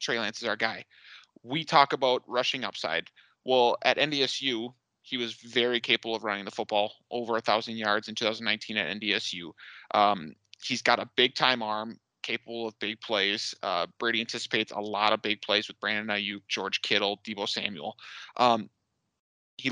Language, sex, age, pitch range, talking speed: English, male, 30-49, 105-120 Hz, 165 wpm